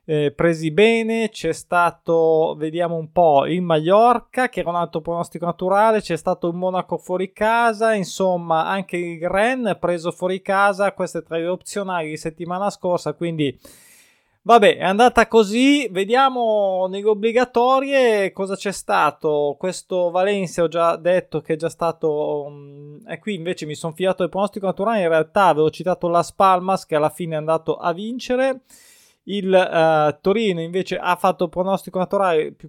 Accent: native